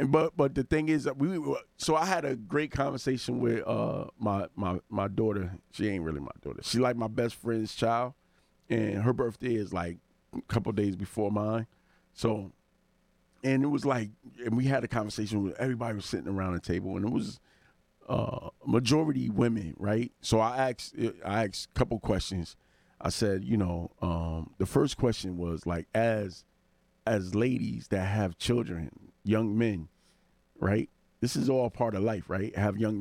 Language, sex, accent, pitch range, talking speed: English, male, American, 95-115 Hz, 185 wpm